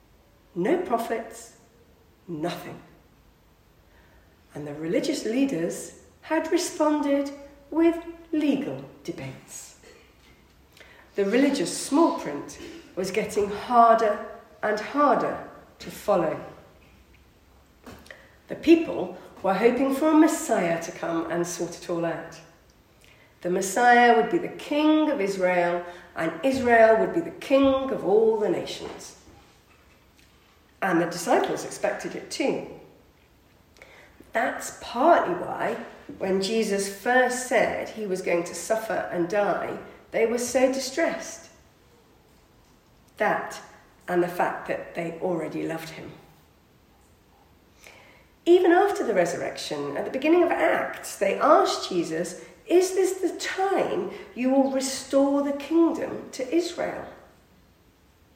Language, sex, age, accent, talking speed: English, female, 50-69, British, 115 wpm